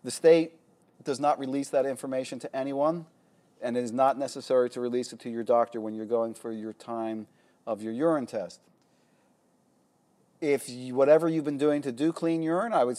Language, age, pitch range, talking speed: English, 40-59, 115-150 Hz, 190 wpm